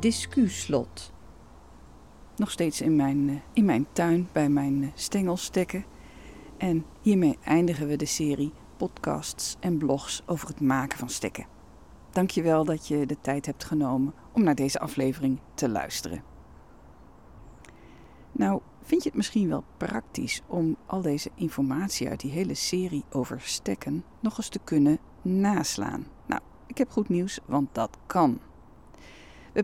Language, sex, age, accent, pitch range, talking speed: Dutch, female, 40-59, Dutch, 135-190 Hz, 145 wpm